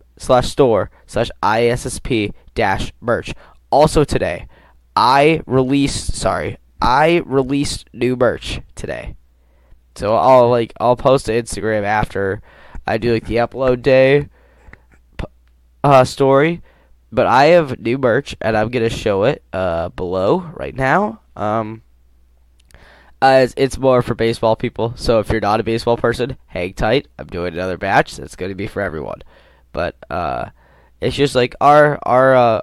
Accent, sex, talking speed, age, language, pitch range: American, male, 145 wpm, 10-29, English, 85-125 Hz